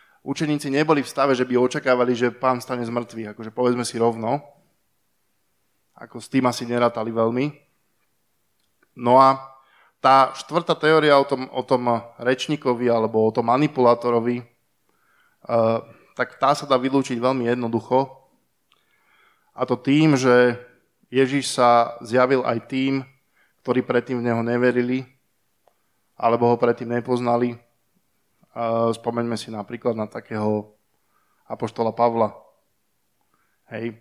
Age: 20-39